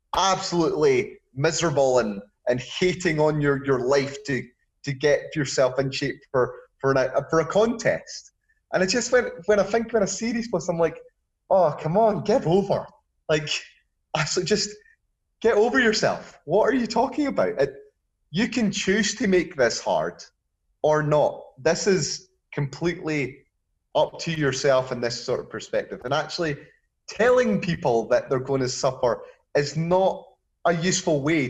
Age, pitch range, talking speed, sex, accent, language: 30-49, 135-195 Hz, 160 wpm, male, British, English